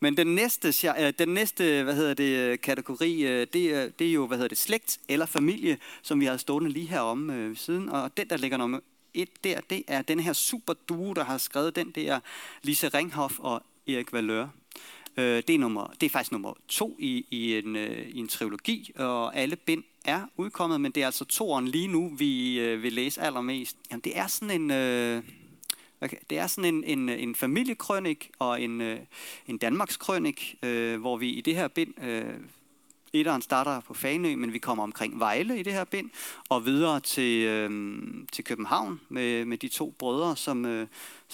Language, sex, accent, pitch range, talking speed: Danish, male, native, 120-185 Hz, 190 wpm